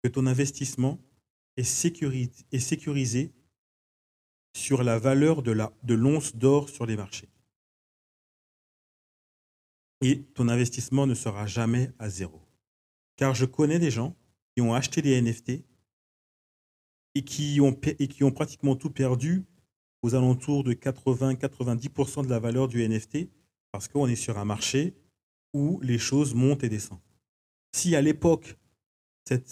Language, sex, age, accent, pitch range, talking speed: French, male, 40-59, French, 120-145 Hz, 140 wpm